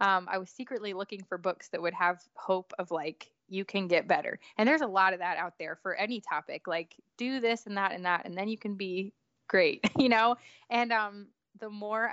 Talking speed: 235 wpm